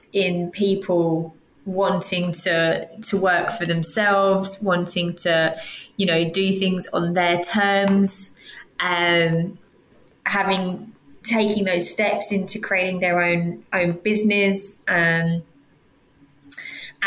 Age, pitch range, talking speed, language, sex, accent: 20-39, 175-210 Hz, 100 wpm, English, female, British